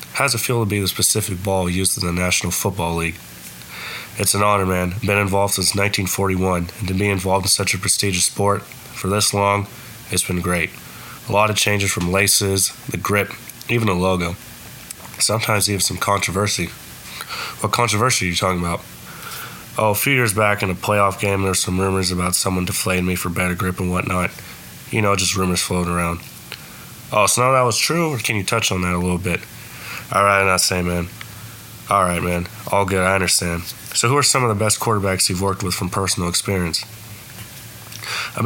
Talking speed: 200 wpm